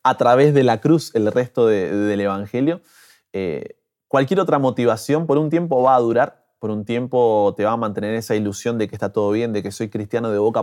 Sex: male